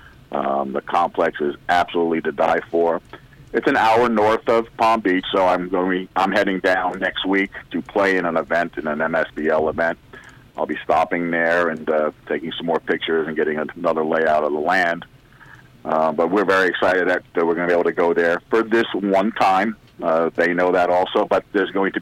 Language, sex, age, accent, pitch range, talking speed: English, male, 50-69, American, 80-100 Hz, 215 wpm